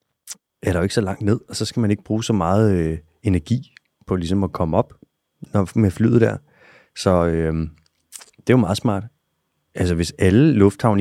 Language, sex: Danish, male